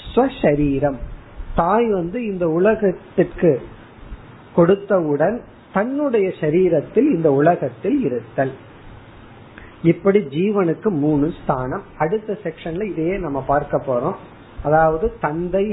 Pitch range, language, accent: 145-205 Hz, Tamil, native